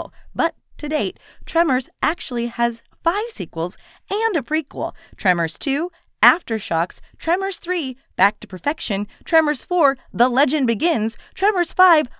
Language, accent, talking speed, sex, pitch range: English, American, 130 wpm, female, 195-310 Hz